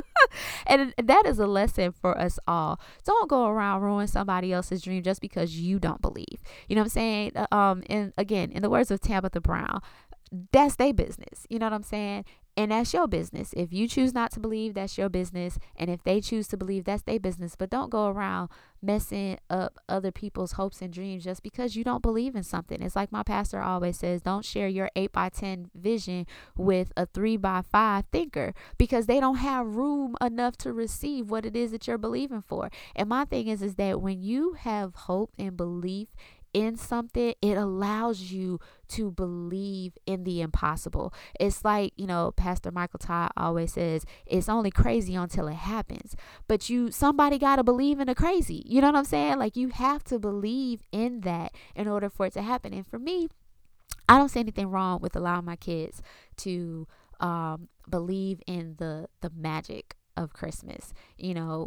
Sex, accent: female, American